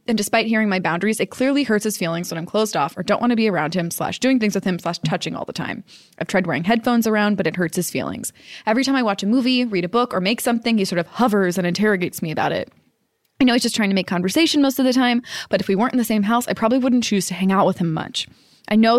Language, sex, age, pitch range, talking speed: English, female, 20-39, 185-230 Hz, 295 wpm